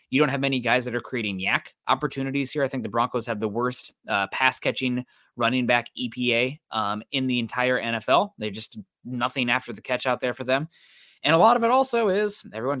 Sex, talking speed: male, 220 wpm